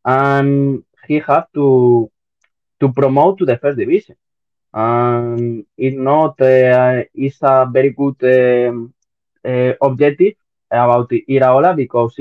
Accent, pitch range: Spanish, 115-140 Hz